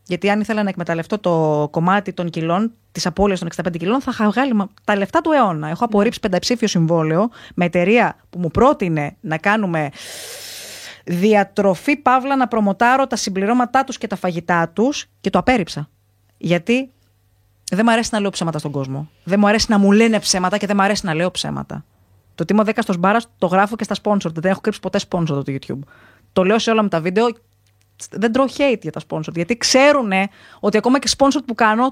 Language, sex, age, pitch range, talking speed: Greek, female, 20-39, 170-235 Hz, 200 wpm